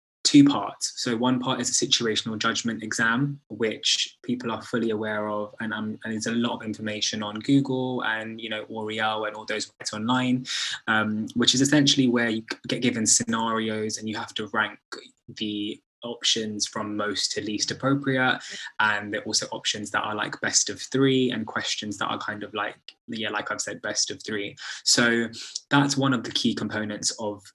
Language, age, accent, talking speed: English, 20-39, British, 190 wpm